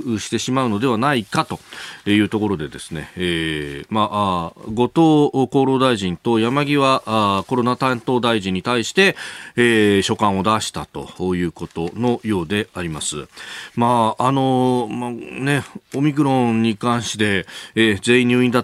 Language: Japanese